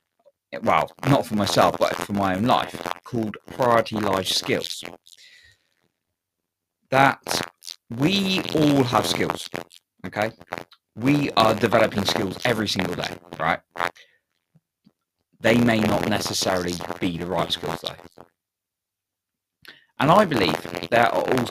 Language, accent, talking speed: English, British, 115 wpm